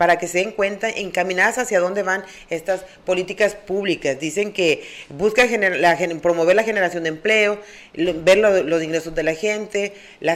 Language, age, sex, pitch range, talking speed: Spanish, 40-59, female, 175-225 Hz, 175 wpm